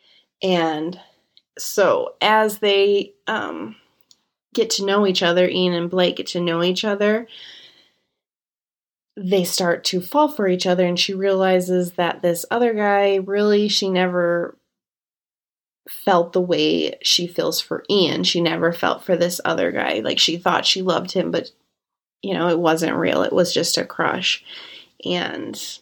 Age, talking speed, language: 20-39, 155 wpm, English